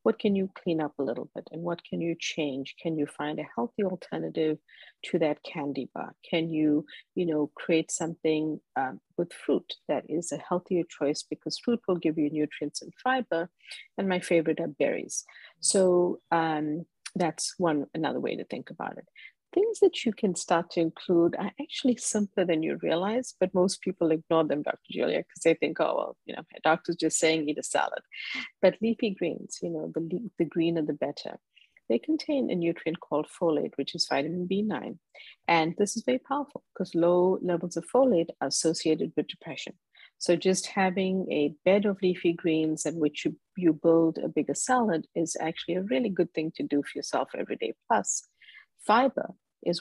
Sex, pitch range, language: female, 155-190 Hz, English